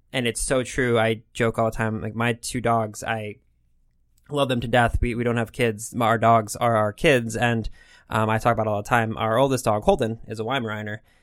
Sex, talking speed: male, 235 wpm